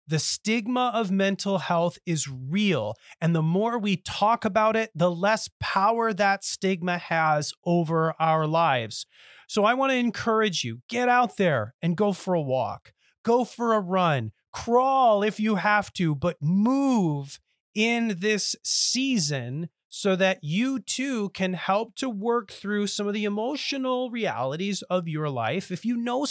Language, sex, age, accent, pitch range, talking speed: English, male, 30-49, American, 150-220 Hz, 160 wpm